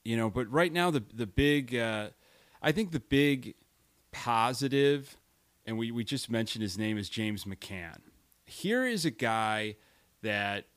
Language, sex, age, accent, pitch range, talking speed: English, male, 30-49, American, 105-140 Hz, 160 wpm